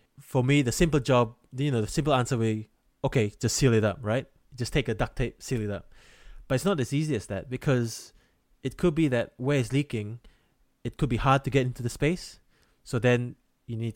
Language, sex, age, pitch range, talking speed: English, male, 20-39, 105-130 Hz, 230 wpm